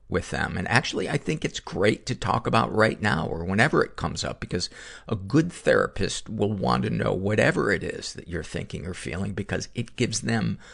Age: 50-69